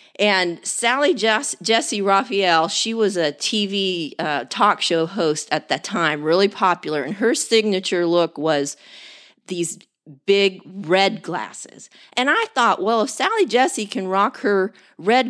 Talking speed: 150 wpm